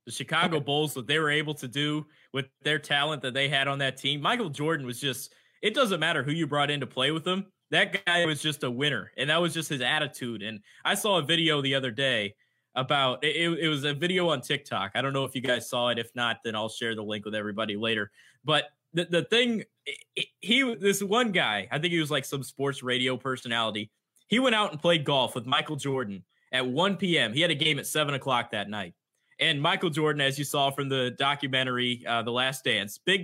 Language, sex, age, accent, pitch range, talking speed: English, male, 20-39, American, 130-175 Hz, 235 wpm